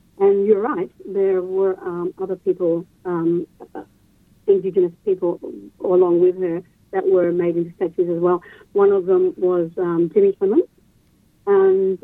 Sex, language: female, English